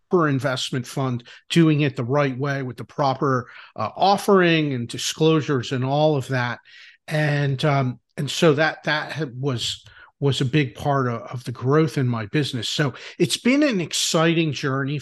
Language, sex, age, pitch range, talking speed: English, male, 40-59, 130-160 Hz, 170 wpm